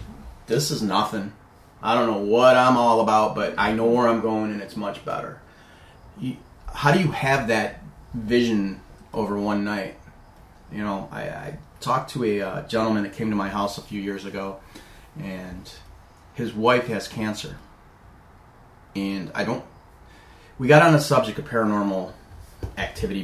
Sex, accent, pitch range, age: male, American, 95-120 Hz, 30-49